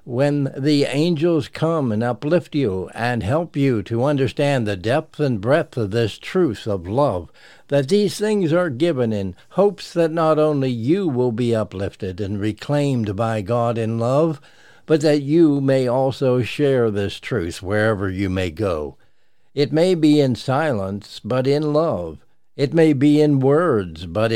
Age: 60-79